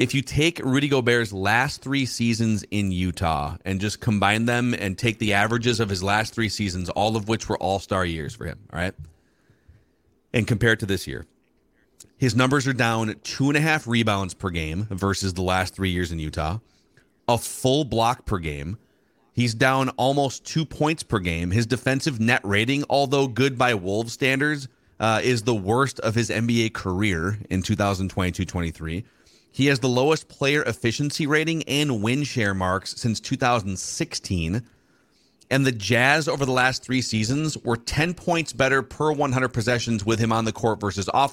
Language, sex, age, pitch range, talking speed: English, male, 30-49, 100-135 Hz, 180 wpm